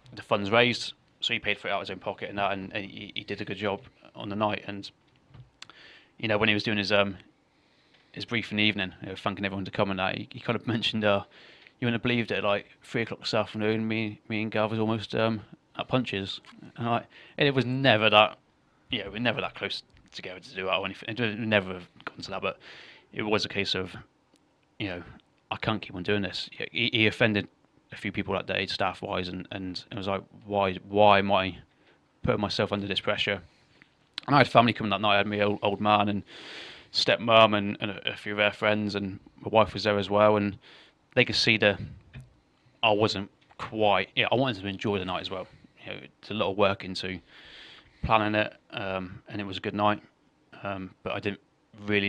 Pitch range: 100-110 Hz